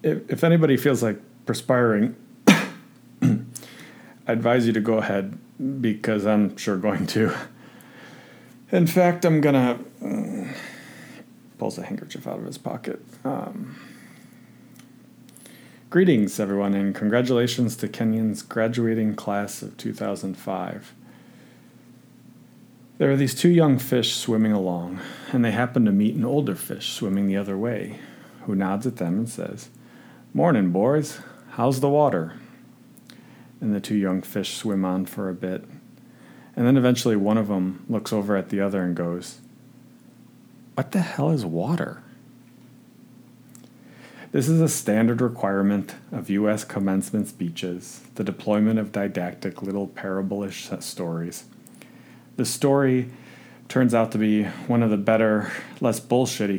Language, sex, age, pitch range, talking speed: English, male, 40-59, 100-125 Hz, 135 wpm